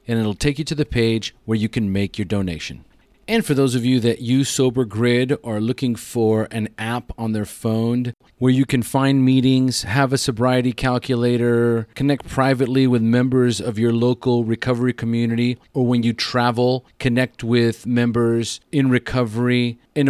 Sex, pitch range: male, 115-135 Hz